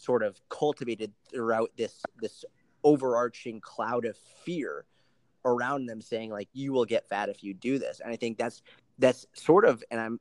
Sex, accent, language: male, American, English